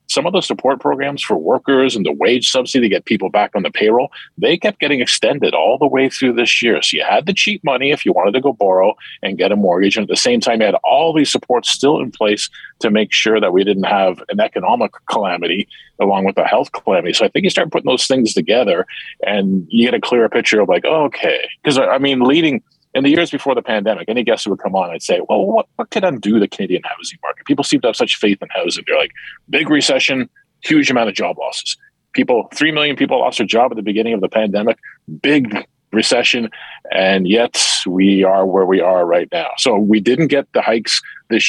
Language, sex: English, male